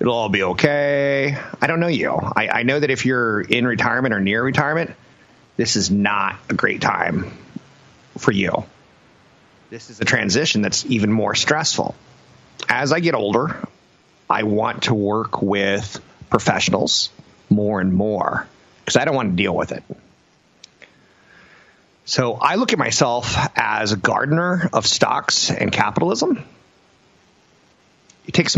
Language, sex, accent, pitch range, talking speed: English, male, American, 100-135 Hz, 145 wpm